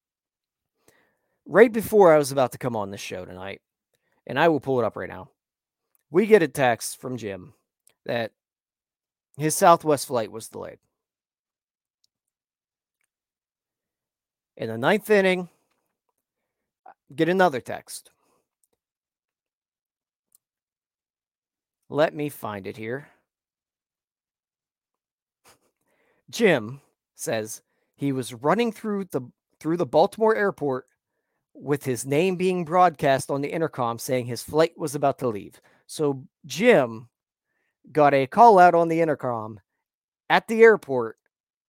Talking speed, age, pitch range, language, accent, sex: 115 wpm, 40-59, 125-175 Hz, English, American, male